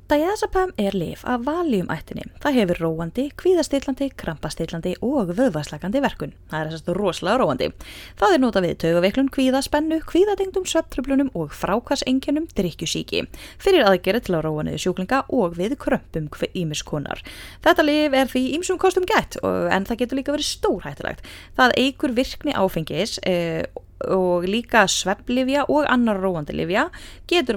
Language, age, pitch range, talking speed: English, 20-39, 180-300 Hz, 145 wpm